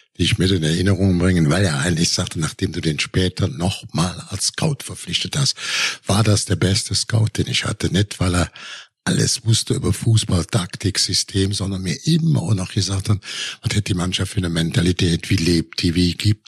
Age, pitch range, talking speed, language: 60-79, 85-105 Hz, 195 wpm, German